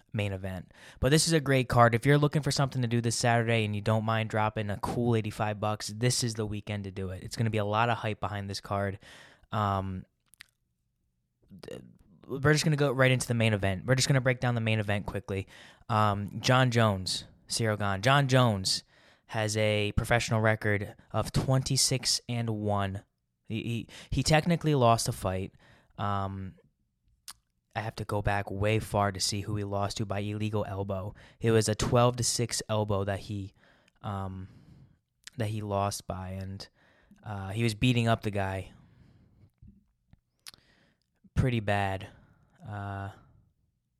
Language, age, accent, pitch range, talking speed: English, 10-29, American, 100-120 Hz, 175 wpm